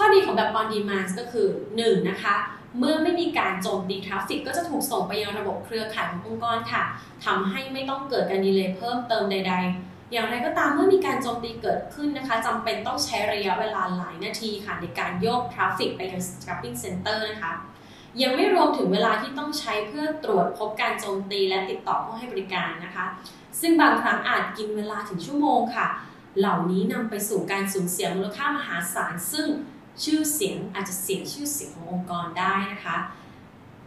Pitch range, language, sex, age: 190-260 Hz, Thai, female, 20-39